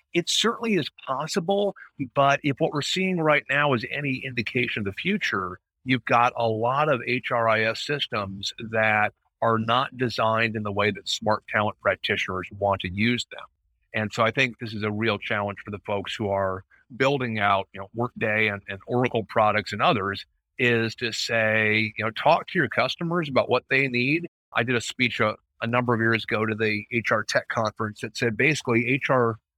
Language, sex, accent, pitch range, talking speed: English, male, American, 105-125 Hz, 195 wpm